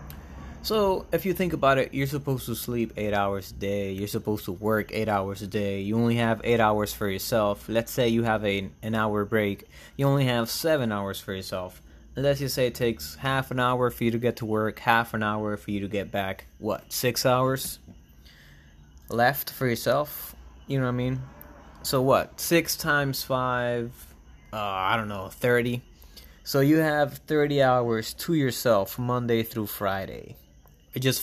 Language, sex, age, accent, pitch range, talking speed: English, male, 20-39, American, 95-125 Hz, 185 wpm